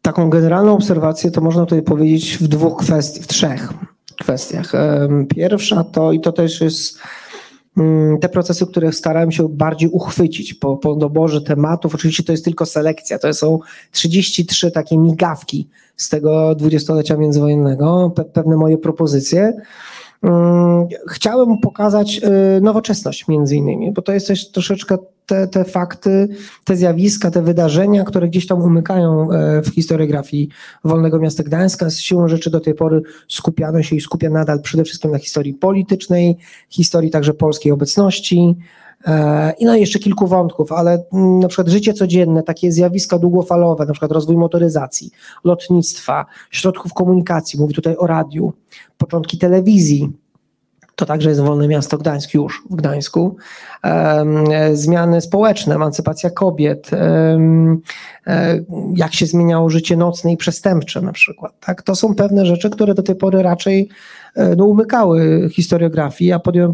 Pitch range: 155-185 Hz